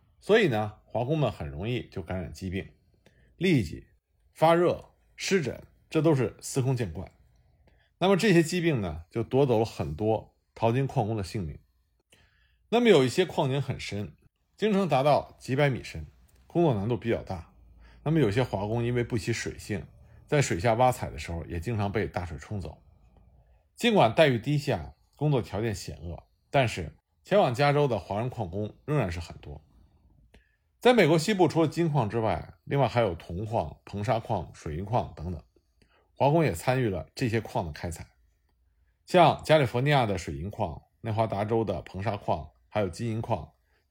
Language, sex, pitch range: Chinese, male, 90-140 Hz